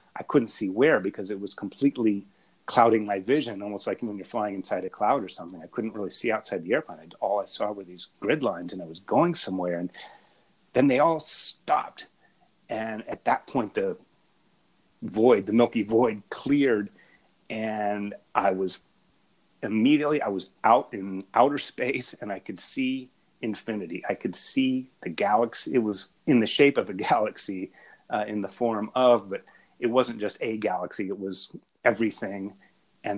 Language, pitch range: English, 100-125 Hz